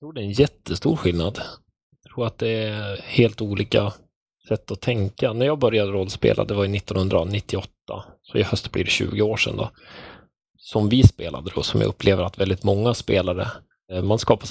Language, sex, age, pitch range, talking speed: Swedish, male, 20-39, 90-105 Hz, 190 wpm